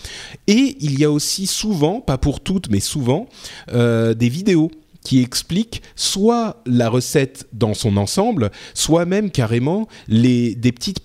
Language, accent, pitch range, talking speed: French, French, 115-160 Hz, 150 wpm